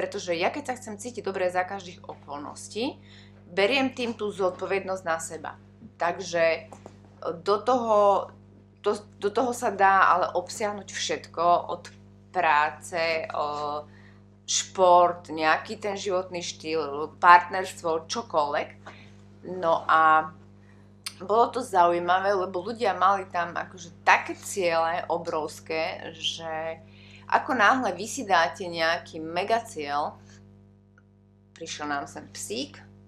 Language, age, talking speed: Slovak, 20-39, 110 wpm